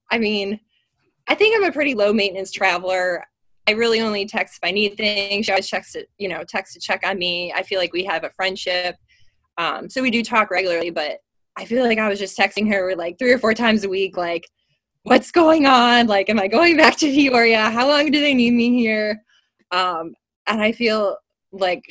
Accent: American